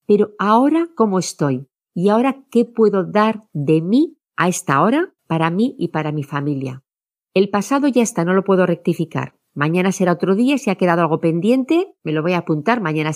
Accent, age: Spanish, 40-59